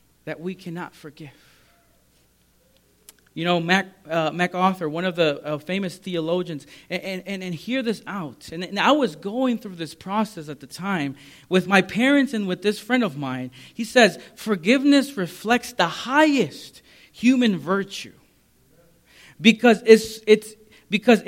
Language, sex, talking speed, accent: English, male, 150 wpm, American